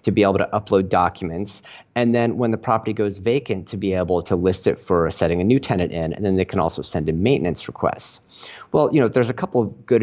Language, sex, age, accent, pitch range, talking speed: English, male, 30-49, American, 95-115 Hz, 250 wpm